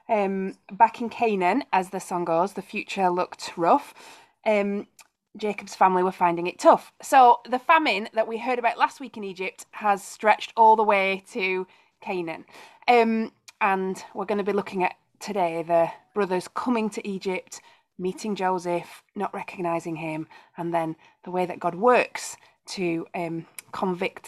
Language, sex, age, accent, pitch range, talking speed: English, female, 20-39, British, 170-210 Hz, 165 wpm